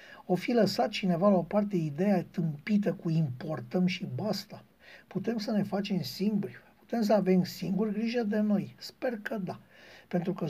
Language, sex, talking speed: Romanian, male, 170 wpm